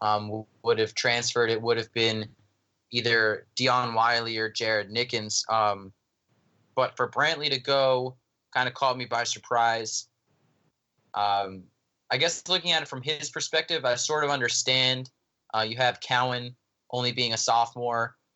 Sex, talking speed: male, 155 wpm